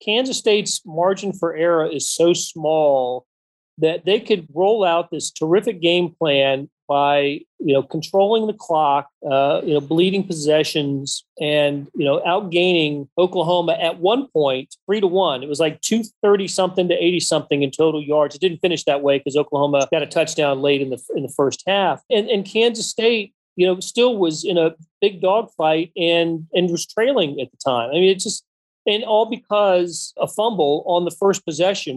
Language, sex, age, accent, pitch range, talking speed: English, male, 40-59, American, 150-190 Hz, 190 wpm